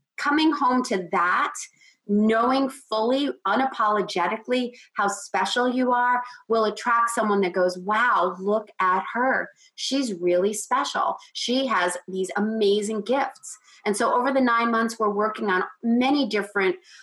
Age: 30-49